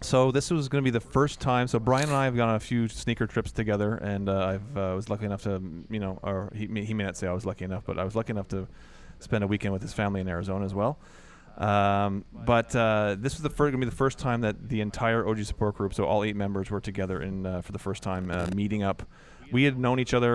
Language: English